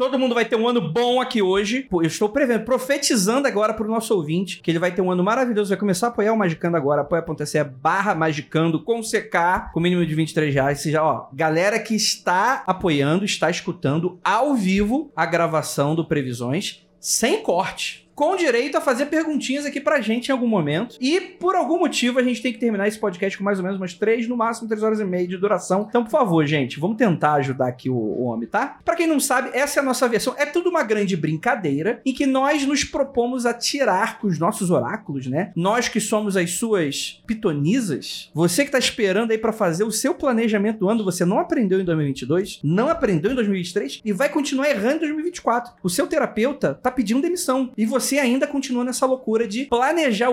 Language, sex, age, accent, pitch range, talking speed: Portuguese, male, 30-49, Brazilian, 175-255 Hz, 210 wpm